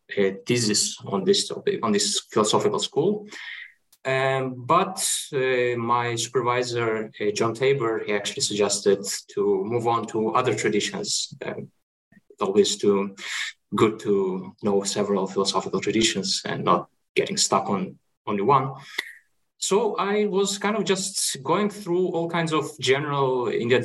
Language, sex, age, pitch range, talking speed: English, male, 20-39, 110-185 Hz, 140 wpm